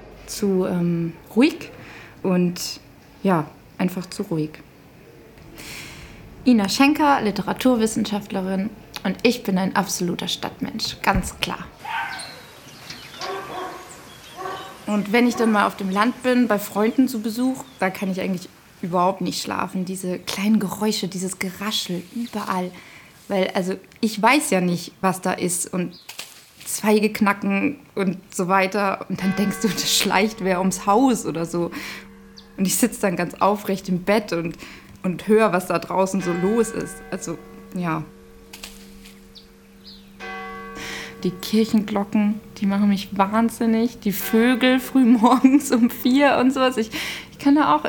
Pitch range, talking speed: 185-225 Hz, 135 wpm